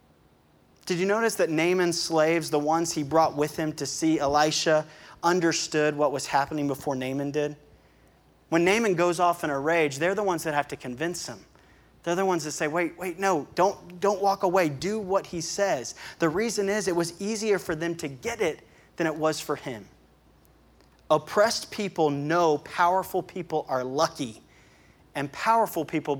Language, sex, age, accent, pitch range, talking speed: English, male, 30-49, American, 145-180 Hz, 180 wpm